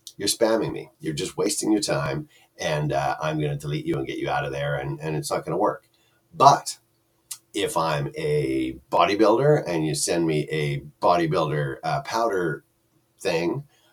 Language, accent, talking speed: English, American, 170 wpm